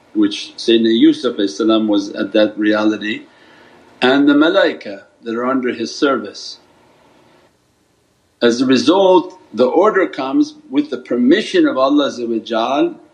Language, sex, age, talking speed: English, male, 50-69, 120 wpm